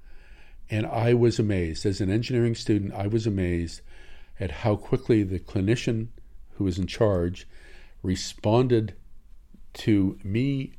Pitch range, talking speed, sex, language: 90-115 Hz, 130 wpm, male, Danish